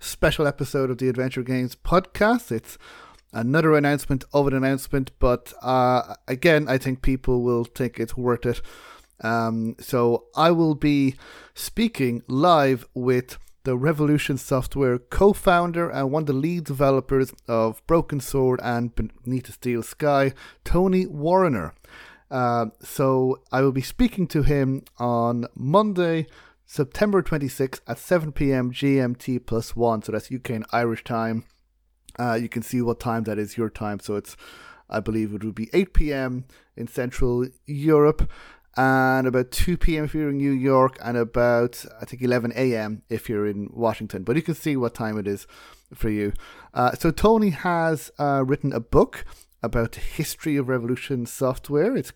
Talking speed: 165 wpm